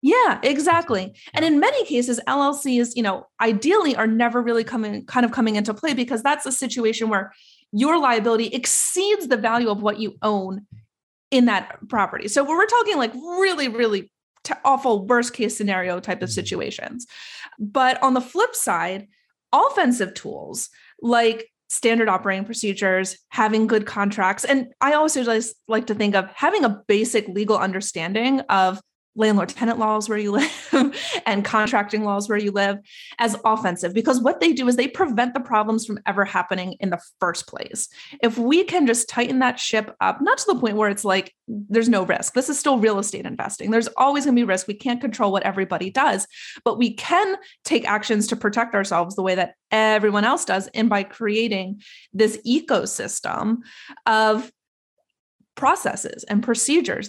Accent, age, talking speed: American, 30-49, 175 wpm